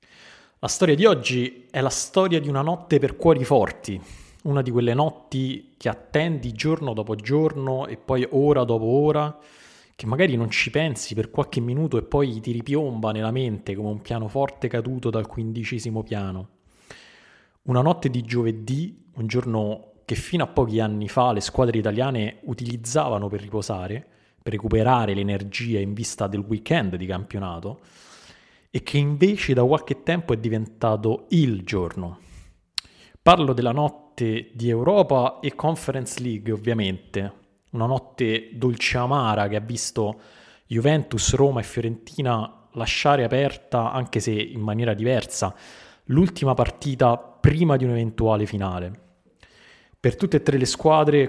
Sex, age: male, 20-39